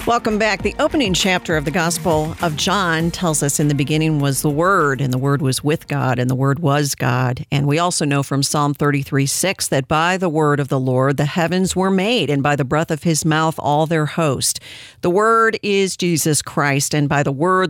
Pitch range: 140-175 Hz